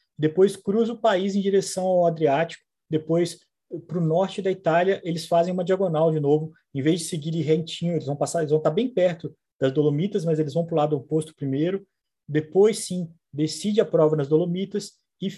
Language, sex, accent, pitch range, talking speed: Portuguese, male, Brazilian, 140-175 Hz, 200 wpm